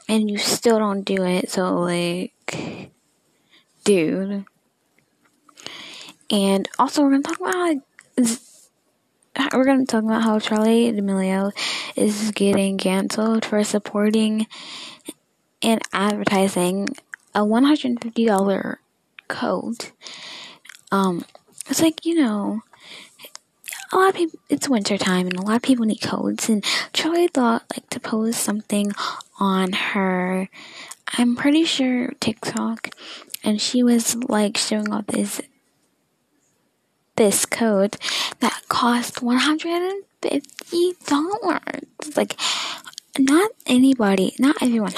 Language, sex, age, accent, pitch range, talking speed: English, female, 10-29, American, 200-270 Hz, 115 wpm